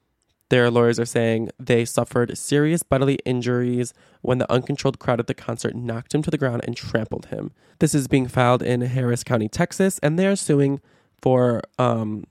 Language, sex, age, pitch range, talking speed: English, male, 20-39, 120-135 Hz, 185 wpm